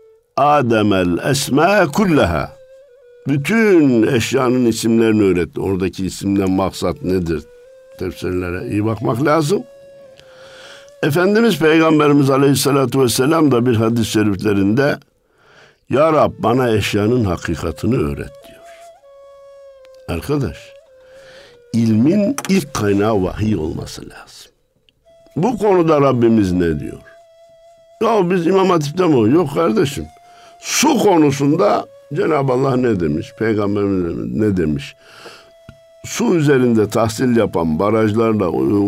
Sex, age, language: male, 60-79, Turkish